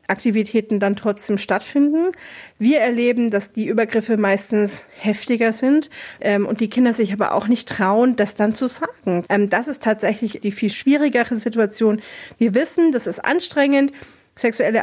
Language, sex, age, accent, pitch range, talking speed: German, female, 30-49, German, 205-255 Hz, 160 wpm